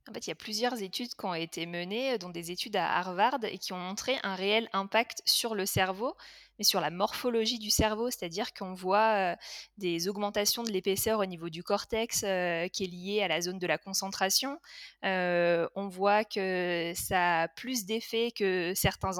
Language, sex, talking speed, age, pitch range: French, female, 195 wpm, 20-39, 180-220 Hz